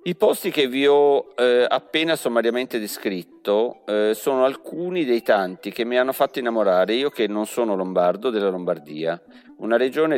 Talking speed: 165 wpm